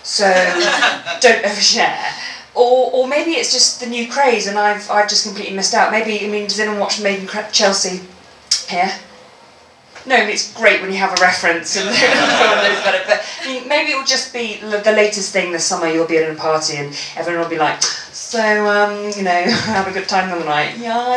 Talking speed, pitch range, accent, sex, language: 200 wpm, 190-245 Hz, British, female, English